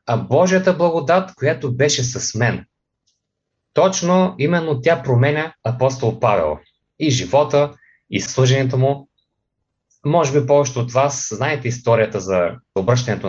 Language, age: Bulgarian, 30-49